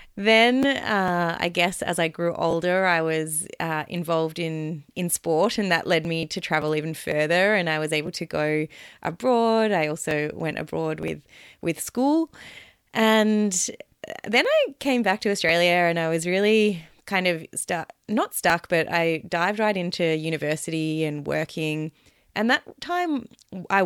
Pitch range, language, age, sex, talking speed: 160-210 Hz, English, 20-39, female, 165 wpm